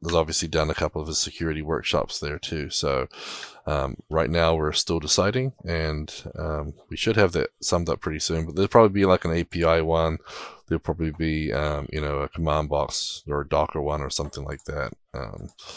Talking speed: 205 wpm